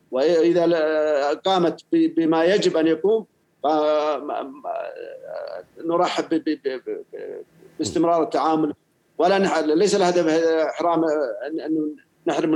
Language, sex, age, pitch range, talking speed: Arabic, male, 50-69, 155-195 Hz, 70 wpm